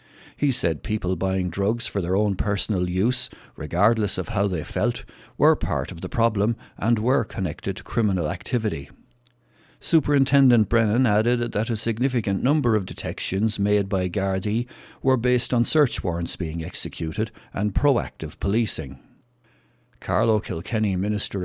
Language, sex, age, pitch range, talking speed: English, male, 60-79, 95-115 Hz, 145 wpm